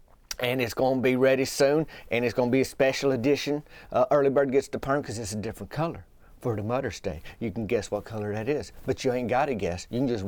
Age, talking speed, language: 30-49, 270 wpm, English